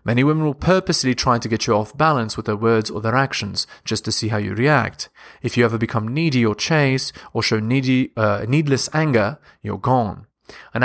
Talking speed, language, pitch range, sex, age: 210 wpm, English, 110-140 Hz, male, 30-49